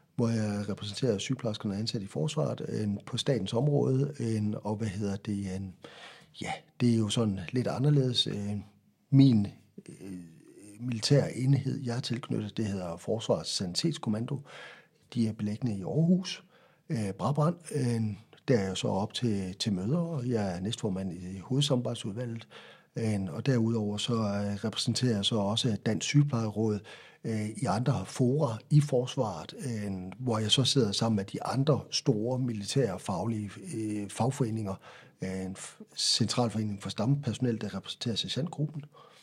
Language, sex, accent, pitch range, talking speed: Danish, male, native, 105-140 Hz, 145 wpm